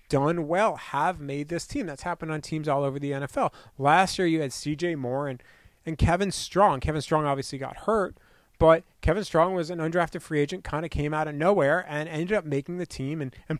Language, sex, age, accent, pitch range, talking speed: English, male, 30-49, American, 145-180 Hz, 225 wpm